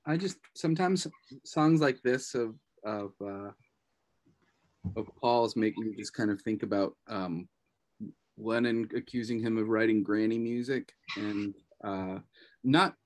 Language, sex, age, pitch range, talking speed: English, male, 30-49, 95-115 Hz, 135 wpm